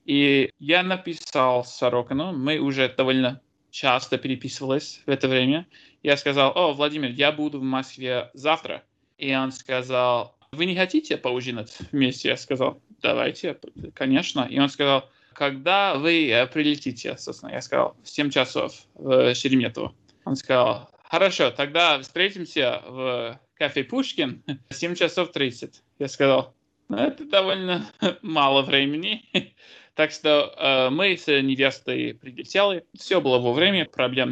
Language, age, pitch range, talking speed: Russian, 20-39, 130-170 Hz, 135 wpm